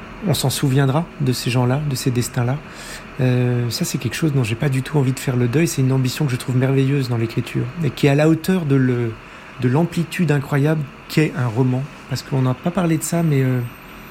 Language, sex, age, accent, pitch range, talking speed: French, male, 40-59, French, 125-155 Hz, 240 wpm